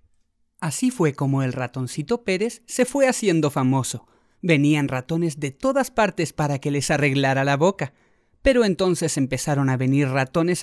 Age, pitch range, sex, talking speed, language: 30-49, 140-210 Hz, male, 150 wpm, Spanish